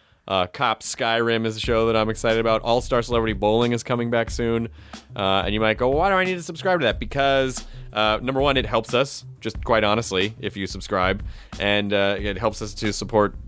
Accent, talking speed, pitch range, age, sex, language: American, 225 wpm, 105-160 Hz, 30-49, male, English